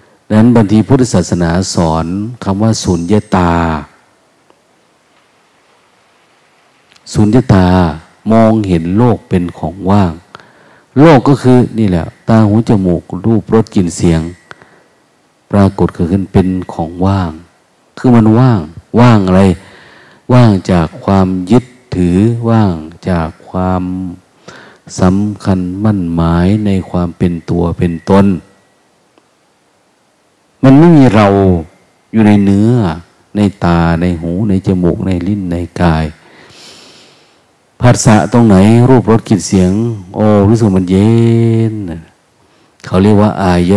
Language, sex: Thai, male